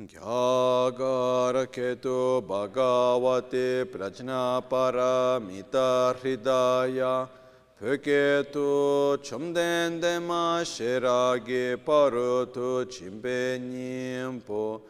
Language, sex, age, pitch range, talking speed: Italian, male, 40-59, 125-145 Hz, 50 wpm